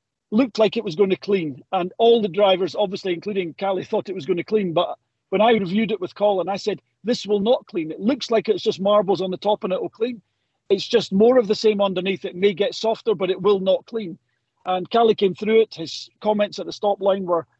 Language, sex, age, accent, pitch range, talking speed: English, male, 40-59, British, 175-210 Hz, 250 wpm